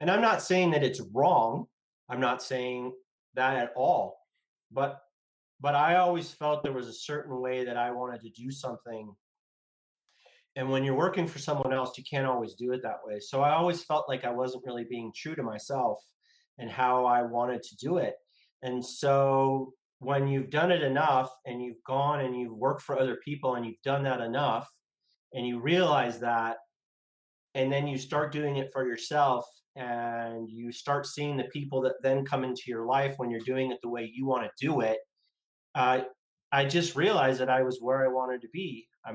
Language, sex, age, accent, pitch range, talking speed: English, male, 30-49, American, 125-145 Hz, 200 wpm